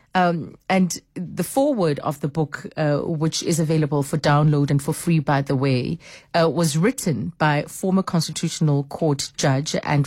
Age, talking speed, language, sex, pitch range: 30-49, 165 wpm, English, female, 150-185 Hz